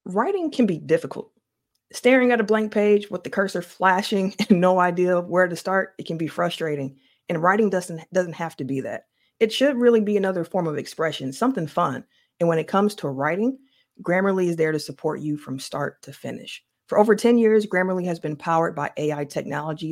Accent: American